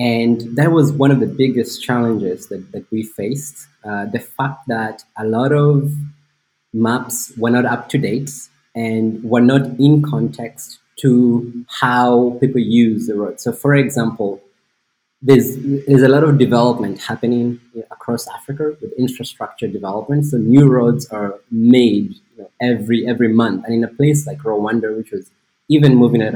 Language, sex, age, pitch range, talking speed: English, male, 20-39, 115-140 Hz, 165 wpm